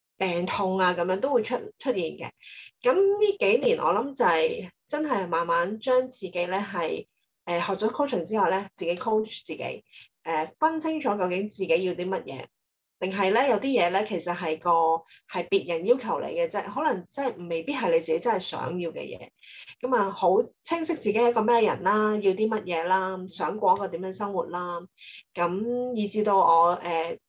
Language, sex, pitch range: Chinese, female, 180-250 Hz